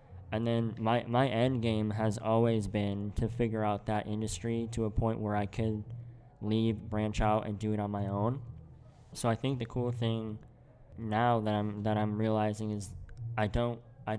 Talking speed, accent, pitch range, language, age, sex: 190 wpm, American, 105-120 Hz, English, 20-39, male